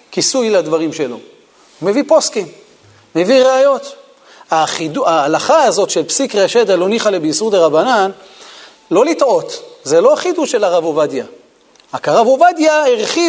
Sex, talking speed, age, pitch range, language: male, 140 wpm, 40-59, 185-305 Hz, Hebrew